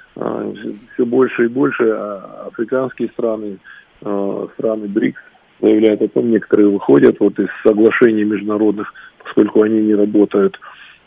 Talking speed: 115 wpm